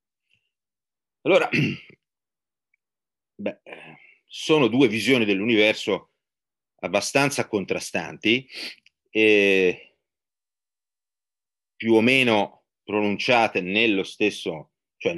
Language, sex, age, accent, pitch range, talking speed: Italian, male, 30-49, native, 90-120 Hz, 65 wpm